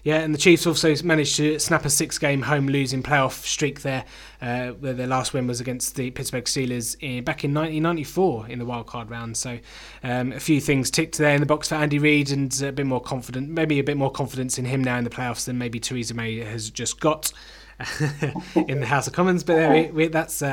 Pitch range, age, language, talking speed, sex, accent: 125-150 Hz, 20-39, English, 235 wpm, male, British